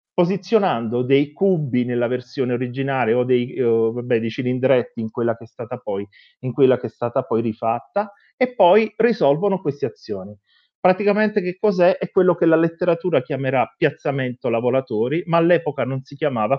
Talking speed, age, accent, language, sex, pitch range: 145 wpm, 30-49, native, Italian, male, 130-170 Hz